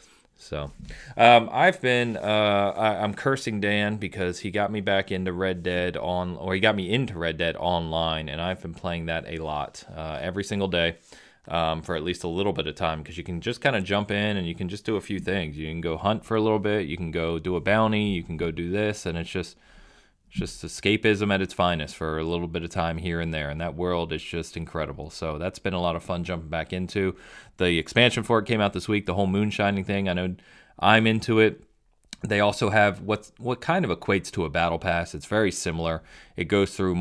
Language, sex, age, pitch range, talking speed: English, male, 30-49, 85-105 Hz, 240 wpm